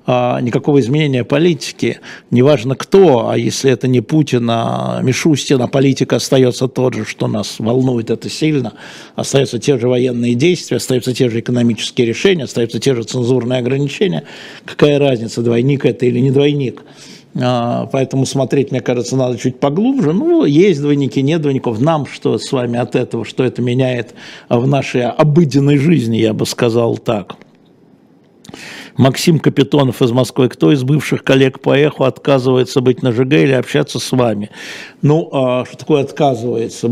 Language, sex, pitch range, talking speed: Russian, male, 120-140 Hz, 150 wpm